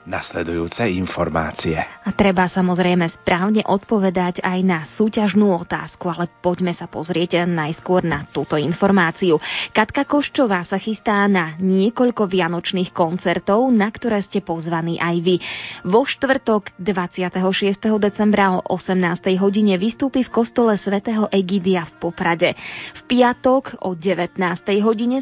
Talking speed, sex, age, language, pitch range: 120 wpm, female, 20-39, Slovak, 180-225 Hz